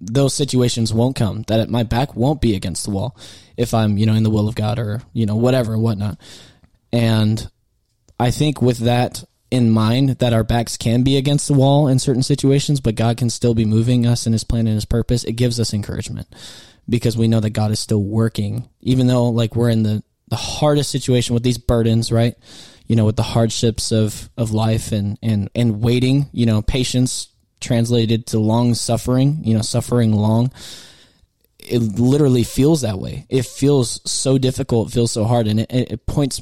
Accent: American